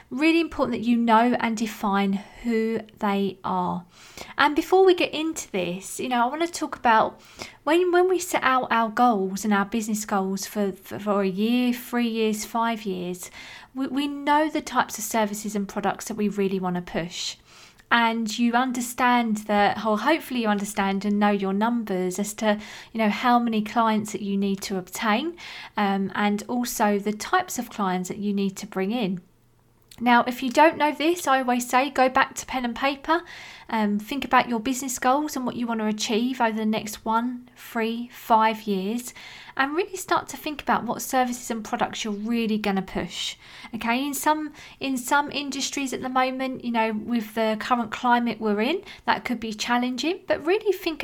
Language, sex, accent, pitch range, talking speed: English, female, British, 205-260 Hz, 200 wpm